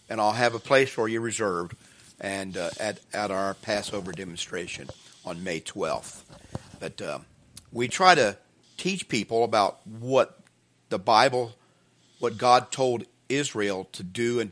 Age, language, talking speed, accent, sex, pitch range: 50-69, English, 150 wpm, American, male, 100-125 Hz